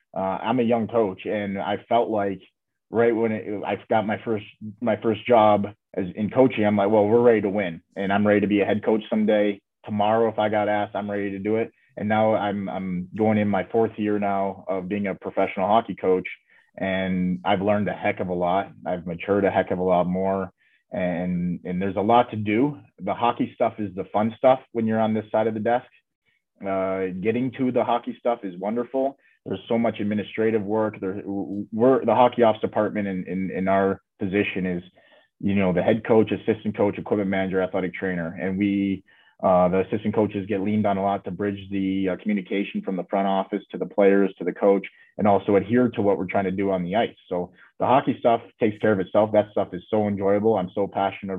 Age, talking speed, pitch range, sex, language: 20-39, 225 wpm, 95-110 Hz, male, English